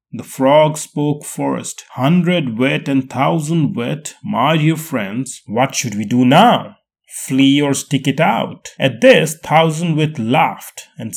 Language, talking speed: English, 150 wpm